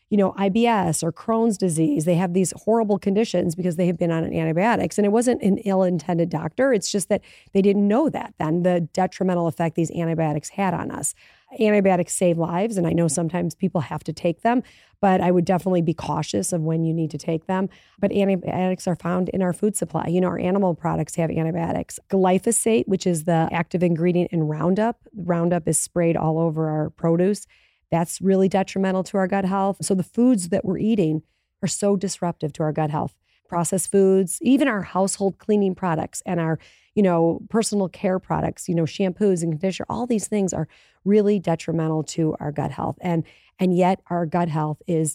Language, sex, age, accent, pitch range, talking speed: English, female, 30-49, American, 160-195 Hz, 200 wpm